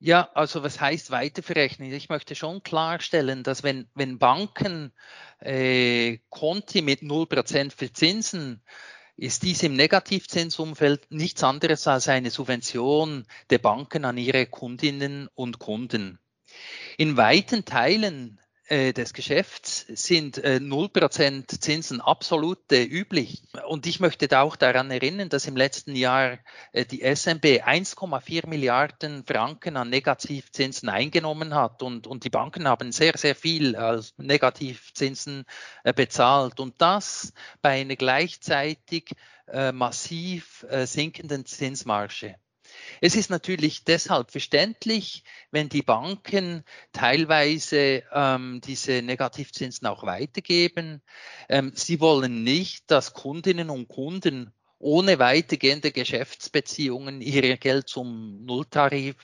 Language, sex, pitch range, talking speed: German, male, 130-160 Hz, 120 wpm